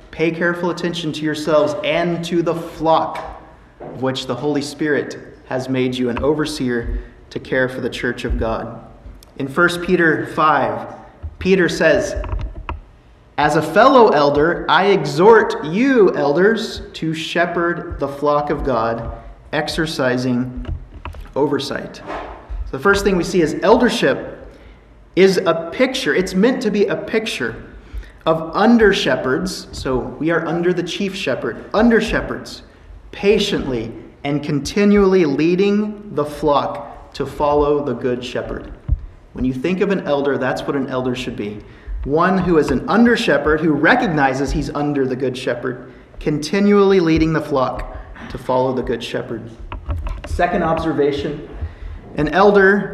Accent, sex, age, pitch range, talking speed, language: American, male, 30-49, 125-175 Hz, 145 wpm, English